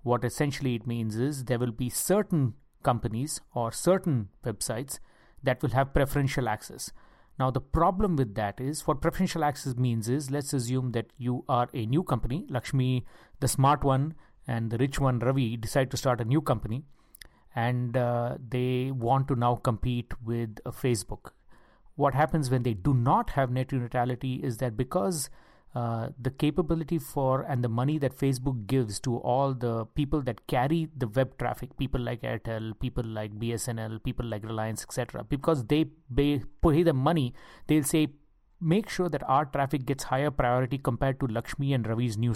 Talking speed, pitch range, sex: 175 wpm, 120-145 Hz, male